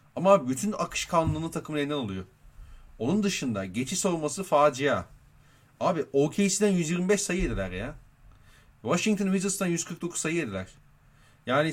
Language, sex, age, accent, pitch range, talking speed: Turkish, male, 40-59, native, 125-175 Hz, 120 wpm